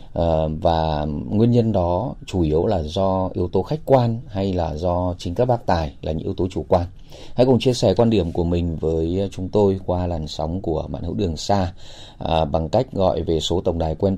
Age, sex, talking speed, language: 30-49, male, 230 wpm, Vietnamese